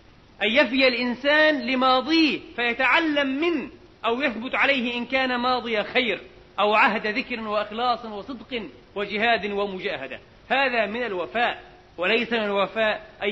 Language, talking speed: Arabic, 120 wpm